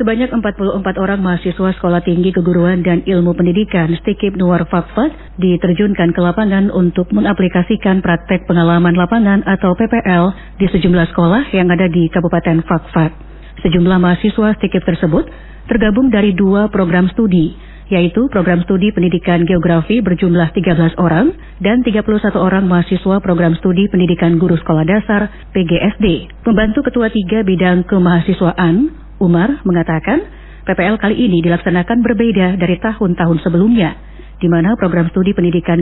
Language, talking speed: Indonesian, 130 wpm